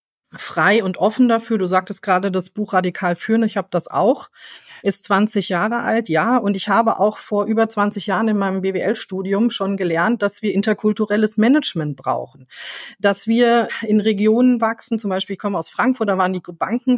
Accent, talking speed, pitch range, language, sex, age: German, 185 wpm, 190-230 Hz, German, female, 40-59